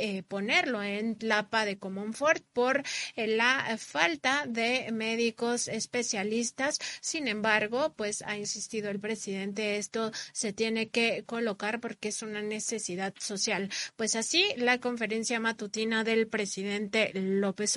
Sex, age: female, 30-49